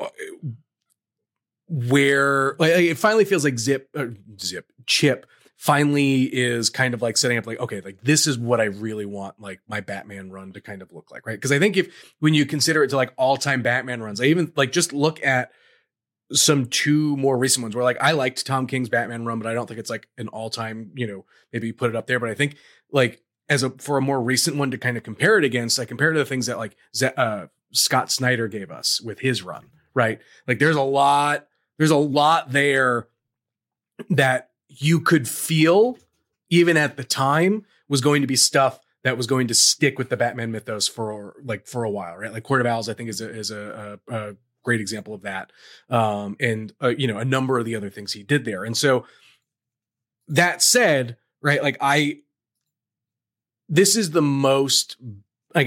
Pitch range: 115-140 Hz